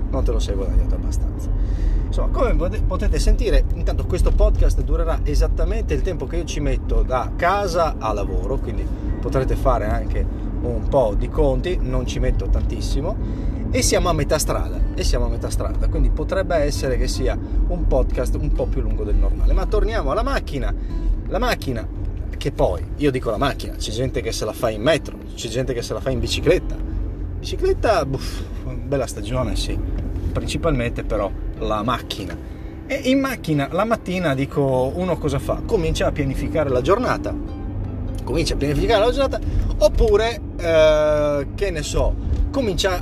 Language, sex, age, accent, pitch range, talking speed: Italian, male, 30-49, native, 95-135 Hz, 170 wpm